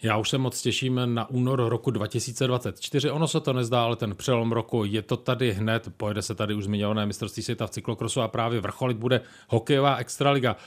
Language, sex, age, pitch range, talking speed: Czech, male, 40-59, 110-130 Hz, 200 wpm